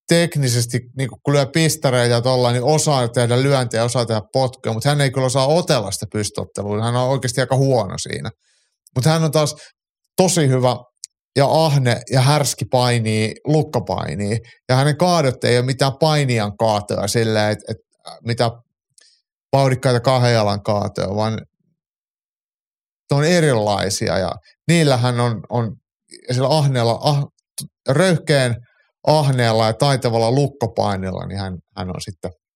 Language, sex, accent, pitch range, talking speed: Finnish, male, native, 110-140 Hz, 135 wpm